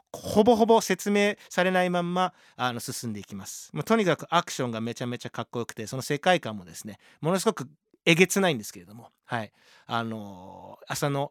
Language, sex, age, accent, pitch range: Japanese, male, 40-59, native, 120-185 Hz